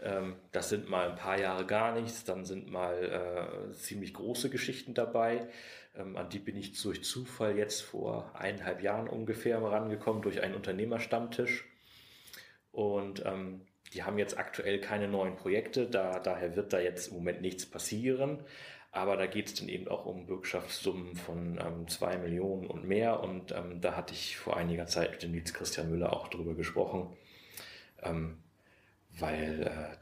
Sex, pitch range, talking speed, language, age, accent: male, 85-105 Hz, 165 wpm, German, 30-49, German